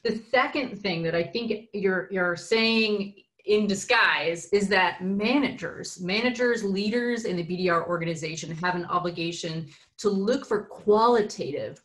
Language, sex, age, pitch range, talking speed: English, female, 30-49, 170-210 Hz, 135 wpm